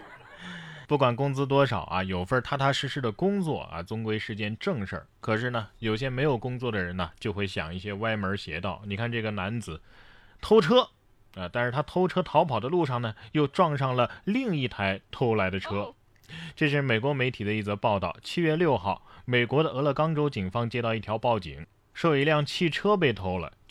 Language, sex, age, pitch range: Chinese, male, 20-39, 105-145 Hz